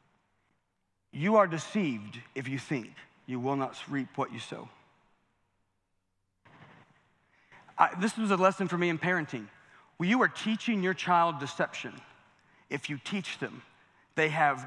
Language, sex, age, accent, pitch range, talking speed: English, male, 40-59, American, 145-190 Hz, 145 wpm